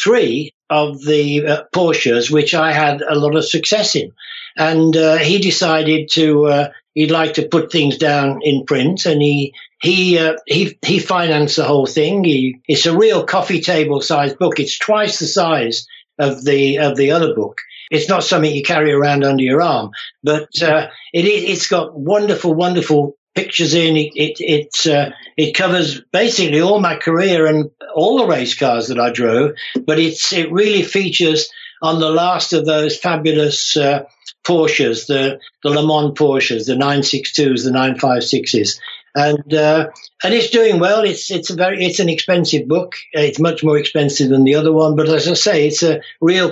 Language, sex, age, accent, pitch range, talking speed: English, male, 60-79, British, 145-170 Hz, 180 wpm